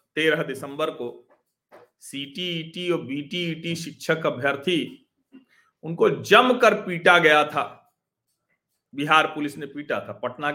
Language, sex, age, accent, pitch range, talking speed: Hindi, male, 40-59, native, 170-230 Hz, 120 wpm